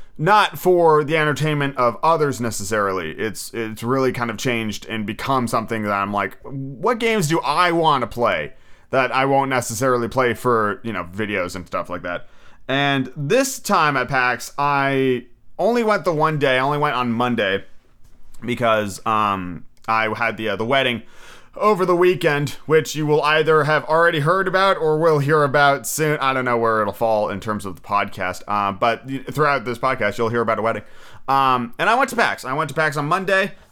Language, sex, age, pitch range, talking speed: English, male, 30-49, 115-150 Hz, 200 wpm